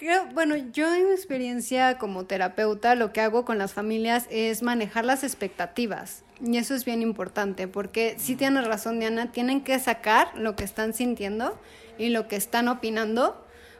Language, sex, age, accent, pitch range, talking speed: Spanish, female, 20-39, Mexican, 205-240 Hz, 170 wpm